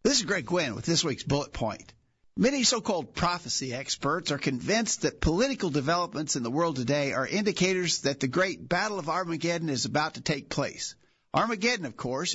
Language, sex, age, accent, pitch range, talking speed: English, male, 50-69, American, 150-190 Hz, 185 wpm